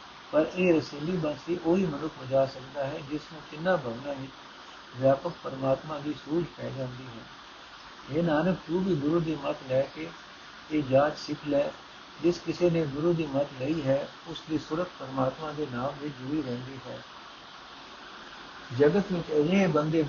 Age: 60-79